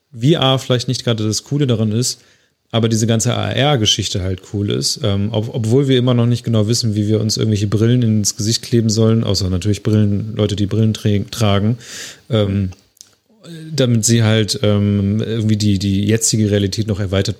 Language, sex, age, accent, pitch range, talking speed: German, male, 30-49, German, 105-125 Hz, 175 wpm